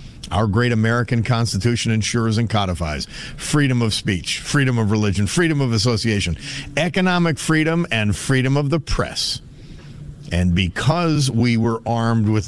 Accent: American